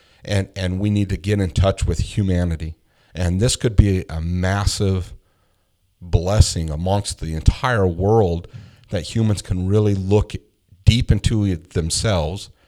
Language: English